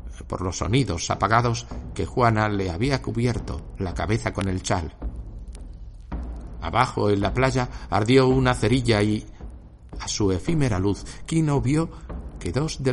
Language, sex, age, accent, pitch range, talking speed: Spanish, male, 60-79, Spanish, 80-125 Hz, 145 wpm